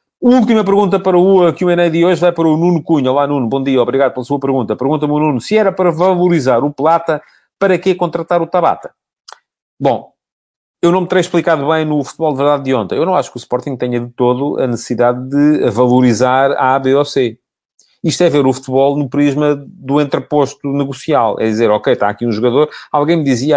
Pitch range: 125-165 Hz